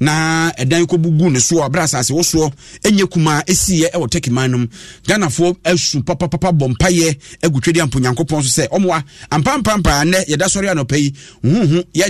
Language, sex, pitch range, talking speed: English, male, 135-180 Hz, 160 wpm